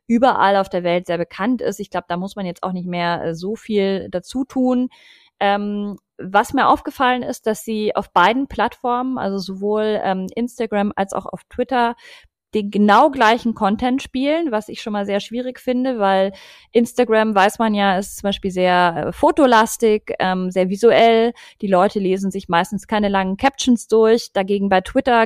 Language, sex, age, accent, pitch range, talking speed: German, female, 30-49, German, 195-245 Hz, 180 wpm